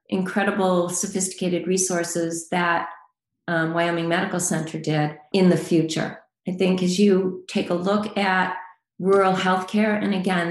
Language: English